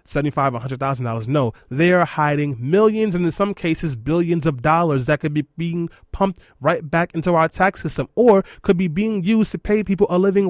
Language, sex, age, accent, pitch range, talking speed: English, male, 20-39, American, 135-185 Hz, 190 wpm